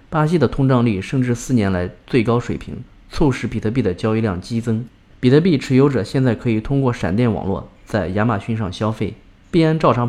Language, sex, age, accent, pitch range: Chinese, male, 20-39, native, 105-135 Hz